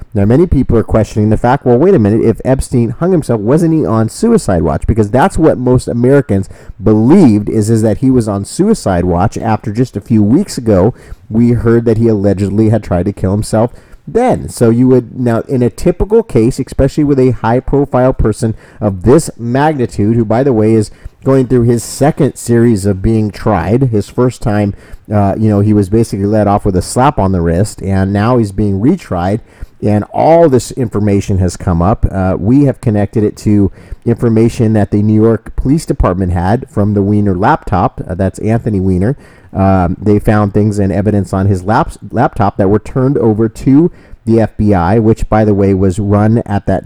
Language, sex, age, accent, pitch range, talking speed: English, male, 30-49, American, 100-120 Hz, 200 wpm